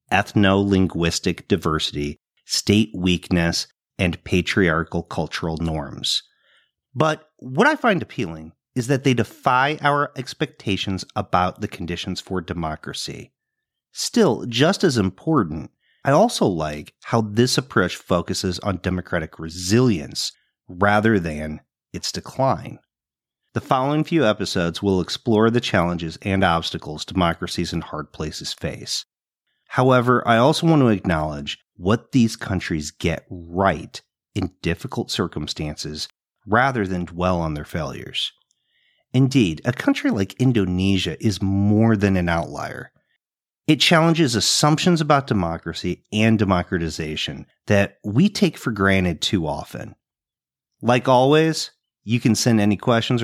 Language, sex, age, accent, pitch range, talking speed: English, male, 40-59, American, 90-125 Hz, 120 wpm